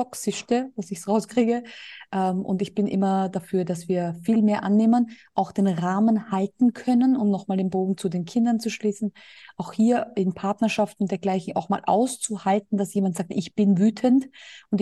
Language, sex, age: German, female, 20-39